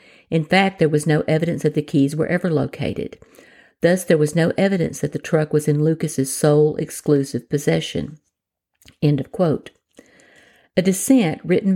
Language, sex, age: English, female, 50-69